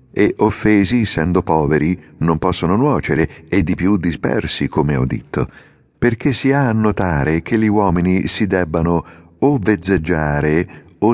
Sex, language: male, Italian